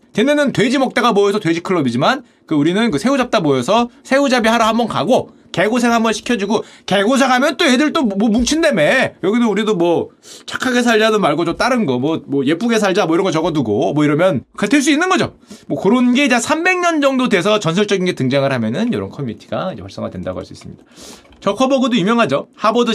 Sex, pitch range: male, 180-240 Hz